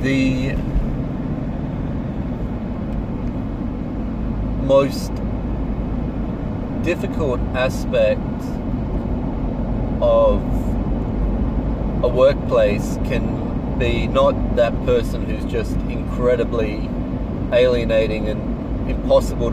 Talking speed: 55 wpm